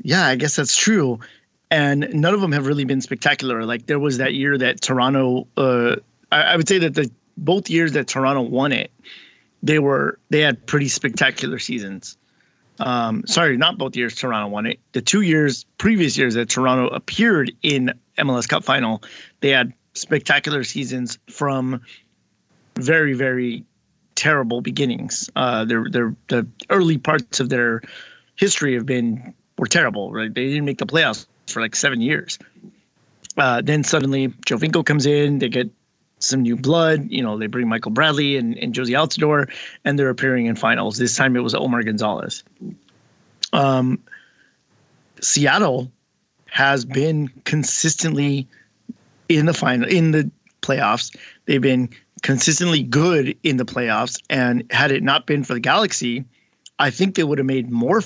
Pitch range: 125-150 Hz